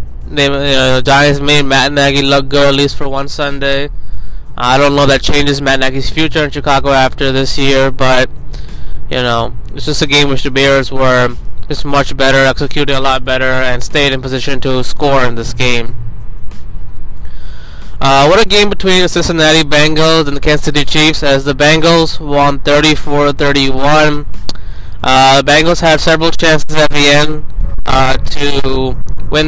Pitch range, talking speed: 130-150 Hz, 170 wpm